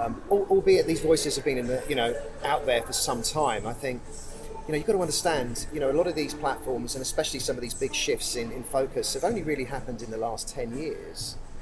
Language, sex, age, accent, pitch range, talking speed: English, male, 30-49, British, 115-150 Hz, 255 wpm